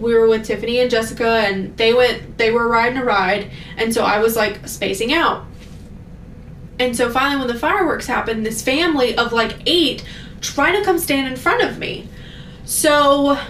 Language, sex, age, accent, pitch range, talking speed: English, female, 20-39, American, 220-275 Hz, 185 wpm